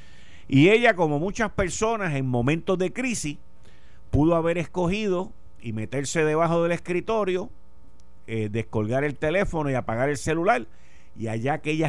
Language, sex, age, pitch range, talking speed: Spanish, male, 50-69, 95-135 Hz, 140 wpm